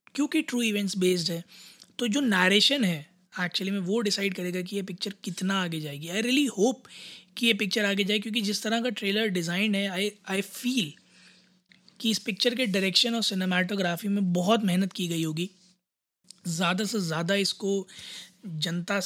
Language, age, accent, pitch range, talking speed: Hindi, 20-39, native, 180-215 Hz, 175 wpm